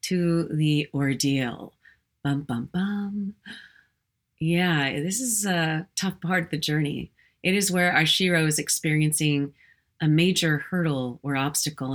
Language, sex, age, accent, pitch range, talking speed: English, female, 30-49, American, 150-190 Hz, 135 wpm